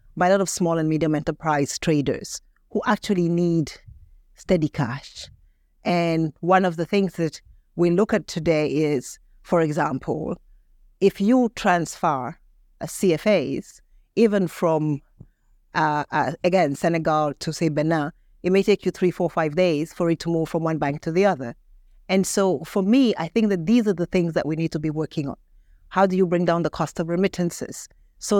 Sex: female